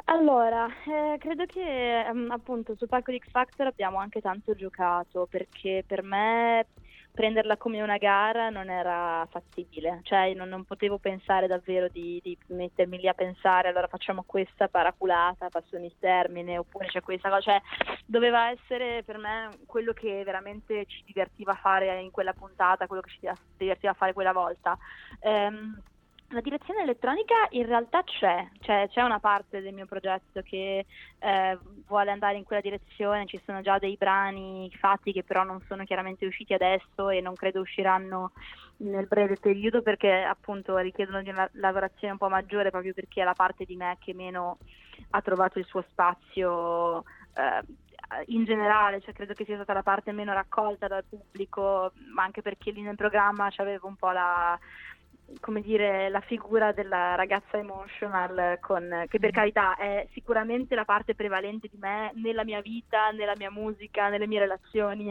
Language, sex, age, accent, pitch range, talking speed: Italian, female, 20-39, native, 185-215 Hz, 170 wpm